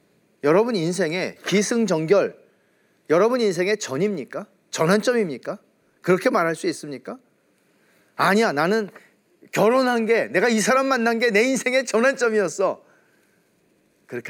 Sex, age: male, 40-59